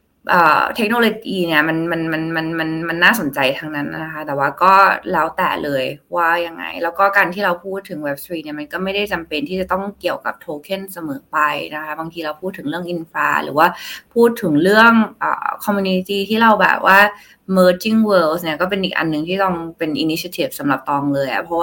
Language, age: Thai, 20-39